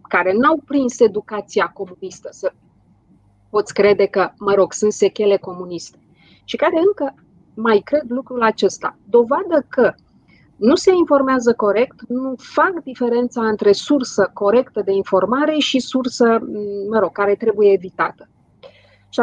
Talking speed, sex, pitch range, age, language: 135 wpm, female, 200-265 Hz, 30-49, Romanian